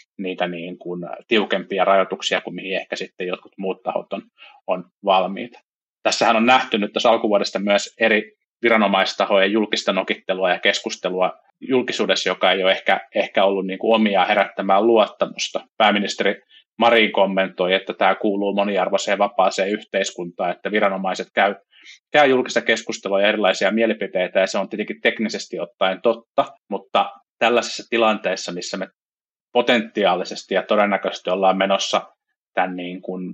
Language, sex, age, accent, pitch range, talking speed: Finnish, male, 30-49, native, 95-110 Hz, 140 wpm